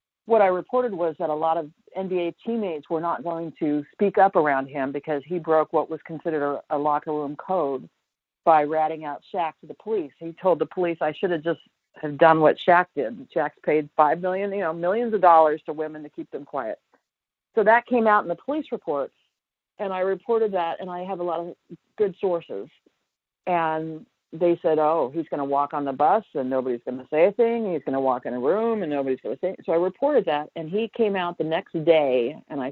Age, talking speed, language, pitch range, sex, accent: 50-69, 230 wpm, English, 155-195 Hz, female, American